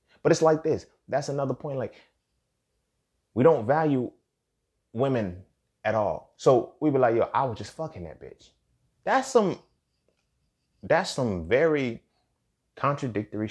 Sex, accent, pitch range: male, American, 100-140 Hz